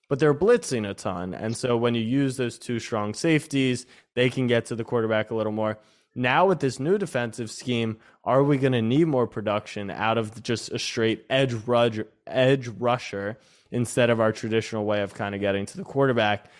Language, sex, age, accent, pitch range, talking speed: English, male, 20-39, American, 105-135 Hz, 205 wpm